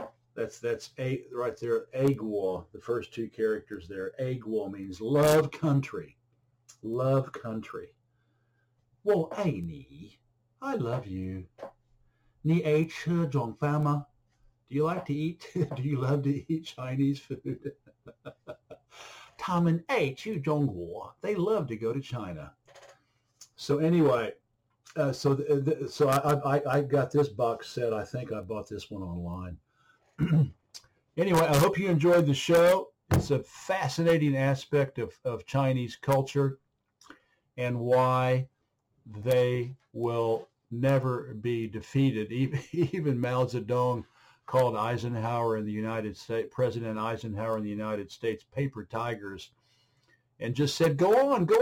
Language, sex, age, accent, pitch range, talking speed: English, male, 60-79, American, 115-145 Hz, 135 wpm